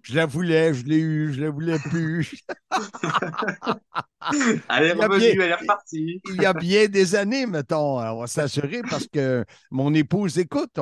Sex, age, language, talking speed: male, 50-69, French, 160 wpm